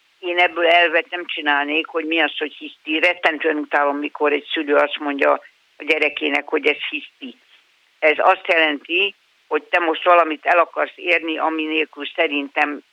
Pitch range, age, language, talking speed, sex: 150-180 Hz, 50-69, Hungarian, 165 wpm, female